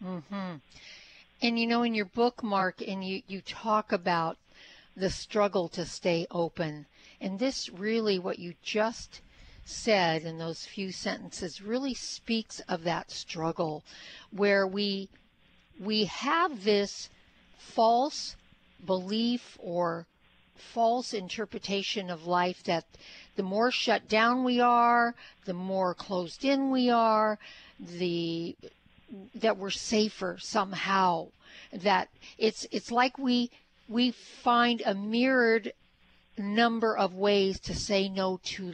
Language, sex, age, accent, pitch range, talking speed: English, female, 50-69, American, 185-230 Hz, 125 wpm